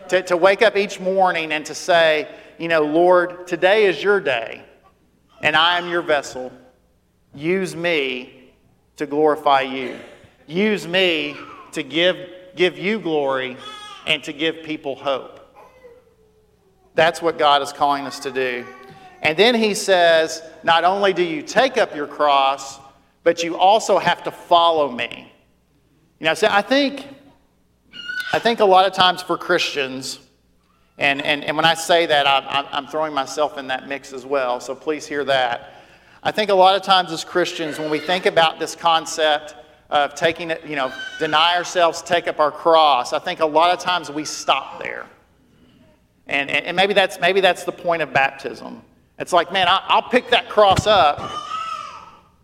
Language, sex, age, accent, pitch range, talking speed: English, male, 50-69, American, 145-185 Hz, 170 wpm